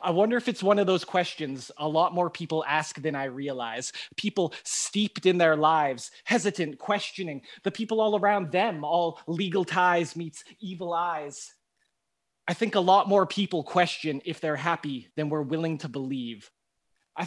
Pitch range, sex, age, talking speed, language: 150-190 Hz, male, 20-39, 175 wpm, English